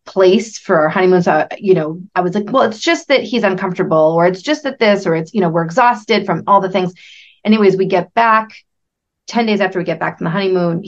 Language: English